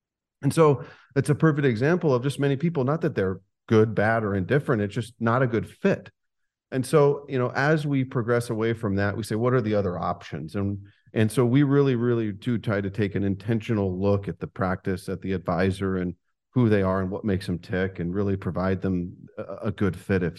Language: English